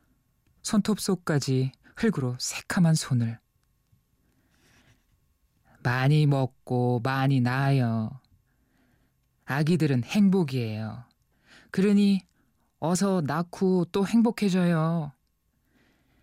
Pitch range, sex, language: 125-175 Hz, male, Korean